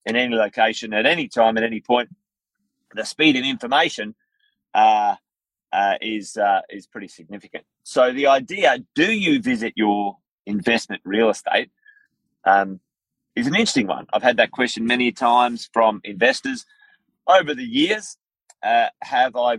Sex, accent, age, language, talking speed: male, Australian, 30-49, English, 150 wpm